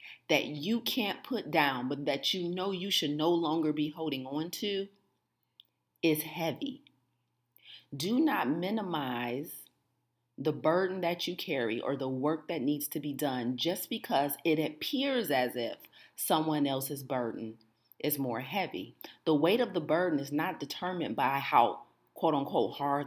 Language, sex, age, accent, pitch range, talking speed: English, female, 40-59, American, 150-185 Hz, 155 wpm